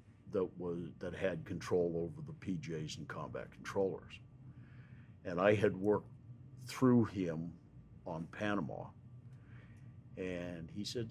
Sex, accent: male, American